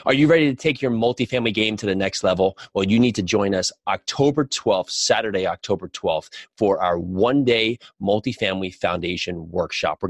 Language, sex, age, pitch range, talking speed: English, male, 30-49, 95-120 Hz, 180 wpm